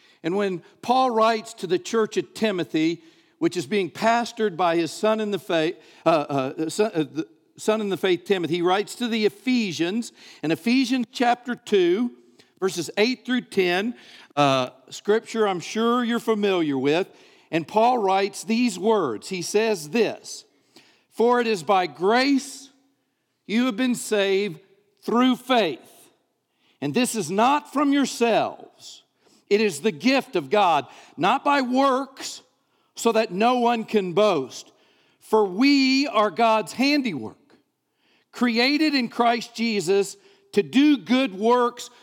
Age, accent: 50-69, American